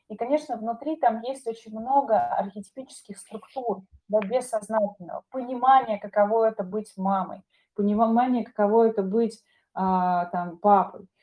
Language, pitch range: Russian, 205-255 Hz